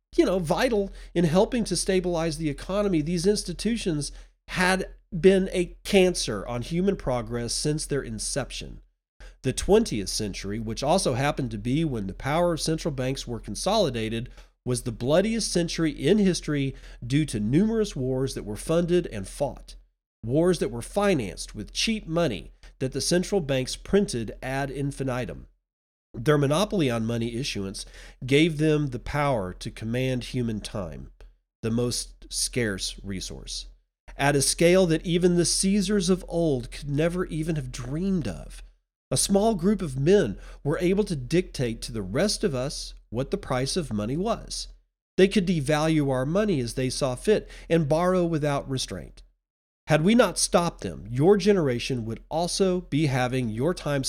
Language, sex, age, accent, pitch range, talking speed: English, male, 40-59, American, 125-180 Hz, 160 wpm